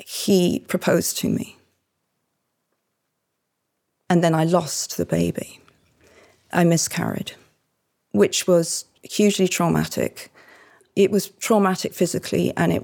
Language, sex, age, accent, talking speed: English, female, 40-59, British, 105 wpm